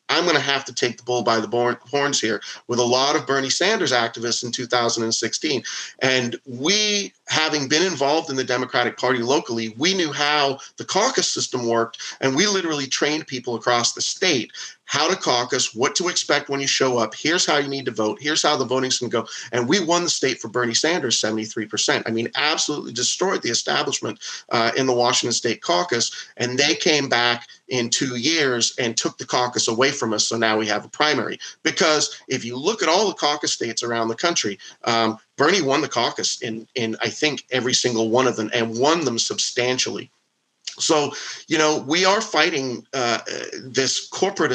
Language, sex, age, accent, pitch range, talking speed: English, male, 40-59, American, 115-140 Hz, 200 wpm